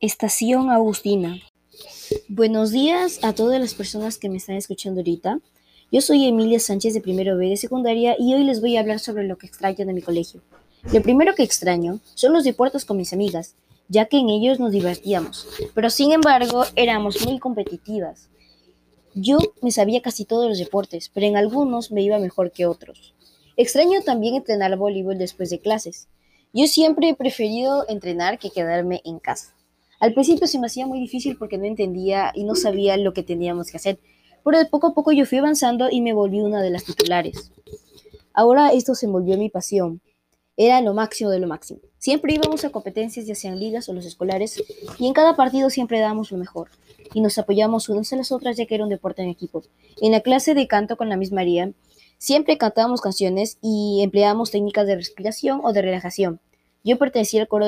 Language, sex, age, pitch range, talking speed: Spanish, male, 20-39, 190-250 Hz, 200 wpm